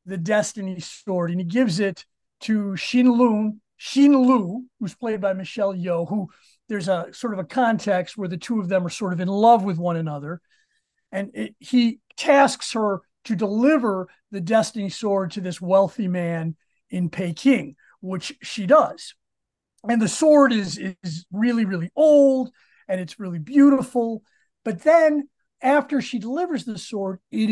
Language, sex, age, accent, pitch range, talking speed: English, male, 40-59, American, 190-255 Hz, 165 wpm